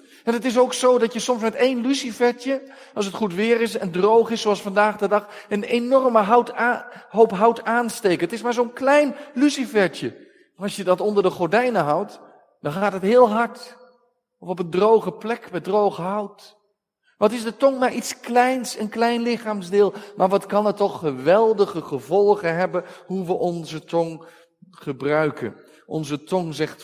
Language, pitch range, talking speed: Dutch, 165-235 Hz, 175 wpm